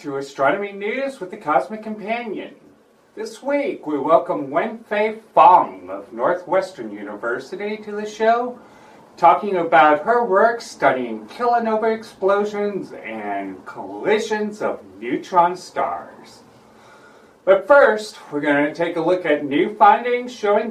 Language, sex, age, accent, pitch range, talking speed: English, male, 40-59, American, 140-215 Hz, 125 wpm